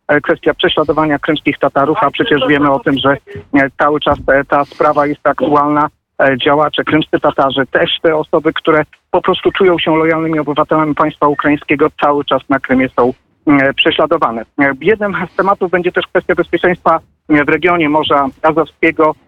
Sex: male